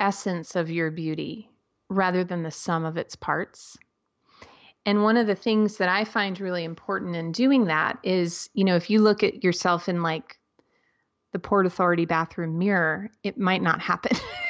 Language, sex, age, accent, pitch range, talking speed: English, female, 30-49, American, 180-230 Hz, 180 wpm